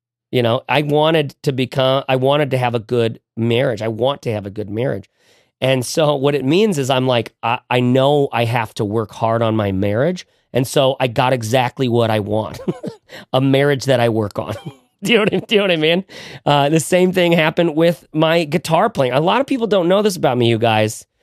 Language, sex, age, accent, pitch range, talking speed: English, male, 40-59, American, 115-155 Hz, 225 wpm